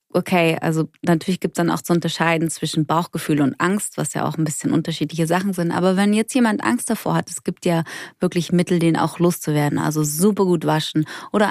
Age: 30-49